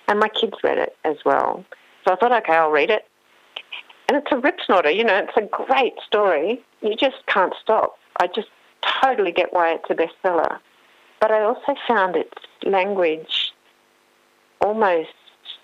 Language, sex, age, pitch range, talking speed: English, female, 50-69, 175-245 Hz, 165 wpm